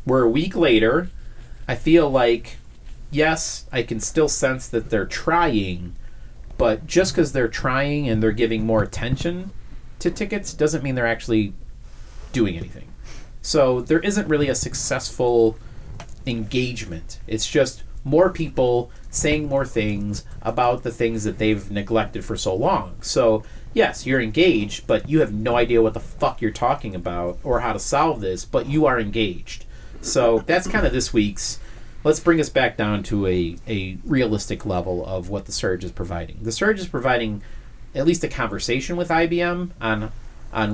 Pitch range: 105-135 Hz